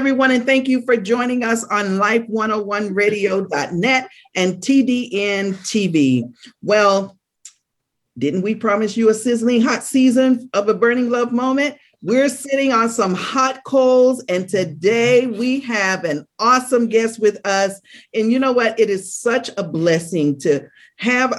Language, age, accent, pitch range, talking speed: English, 40-59, American, 170-240 Hz, 145 wpm